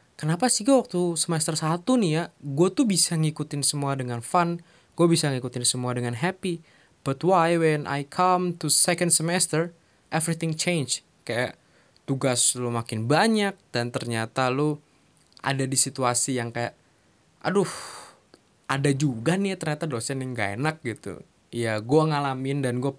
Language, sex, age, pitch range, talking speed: Indonesian, male, 20-39, 125-180 Hz, 155 wpm